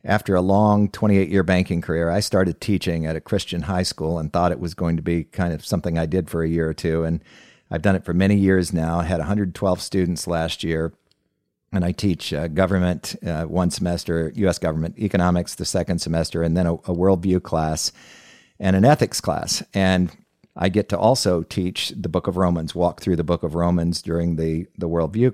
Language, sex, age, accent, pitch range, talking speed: English, male, 50-69, American, 85-95 Hz, 210 wpm